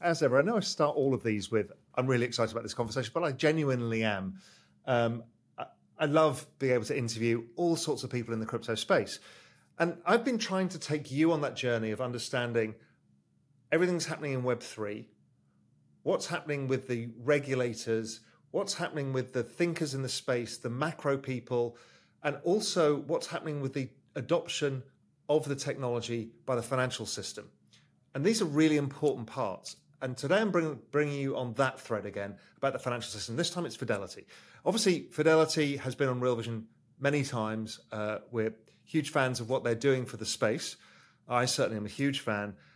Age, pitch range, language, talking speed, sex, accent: 40-59, 115-155 Hz, English, 185 wpm, male, British